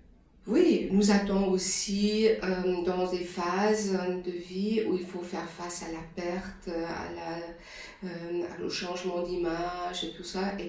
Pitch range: 175-190 Hz